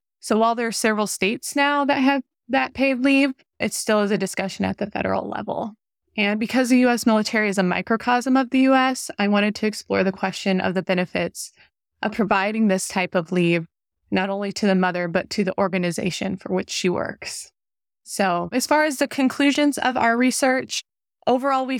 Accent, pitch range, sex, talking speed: American, 190-230 Hz, female, 195 wpm